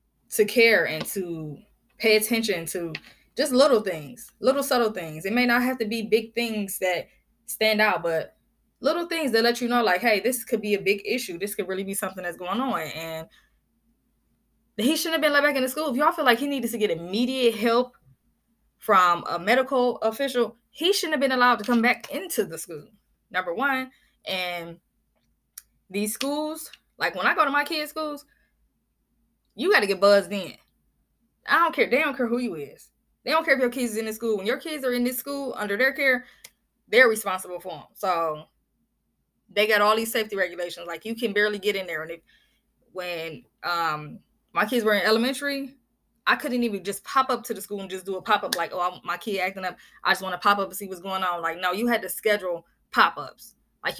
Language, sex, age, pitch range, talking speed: English, female, 20-39, 185-255 Hz, 220 wpm